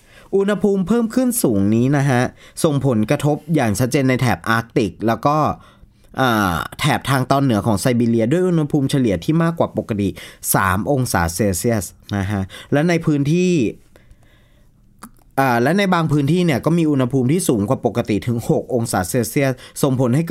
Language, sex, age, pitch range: Thai, male, 20-39, 105-145 Hz